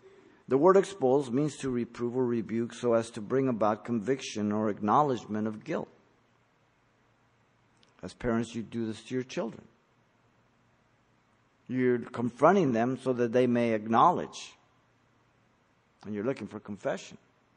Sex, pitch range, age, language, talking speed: male, 110-130 Hz, 50-69, English, 135 wpm